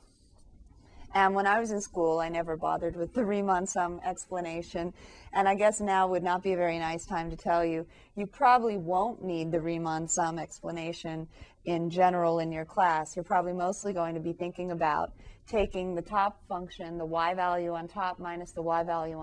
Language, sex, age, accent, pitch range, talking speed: English, female, 30-49, American, 165-195 Hz, 195 wpm